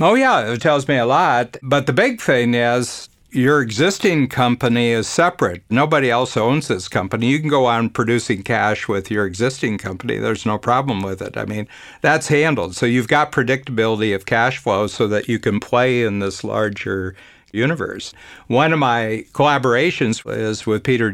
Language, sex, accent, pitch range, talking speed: English, male, American, 110-130 Hz, 180 wpm